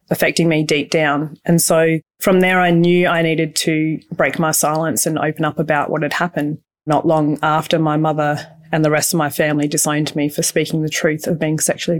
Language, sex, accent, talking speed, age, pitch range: English, female, Australian, 215 wpm, 20-39, 155-175 Hz